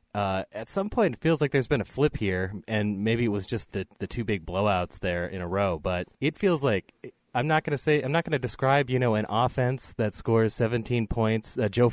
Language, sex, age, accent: English, male, 30-49, American